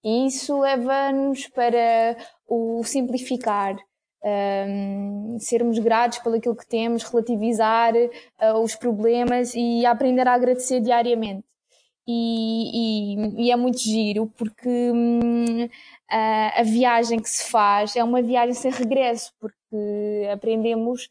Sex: female